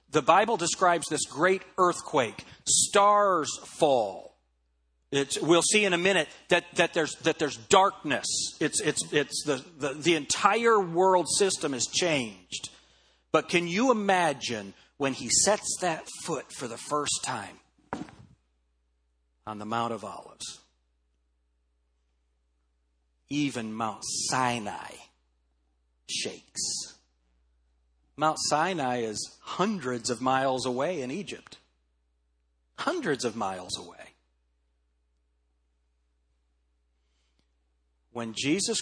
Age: 40-59